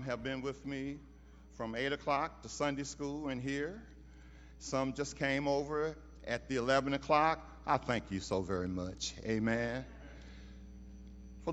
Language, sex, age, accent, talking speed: English, male, 40-59, American, 145 wpm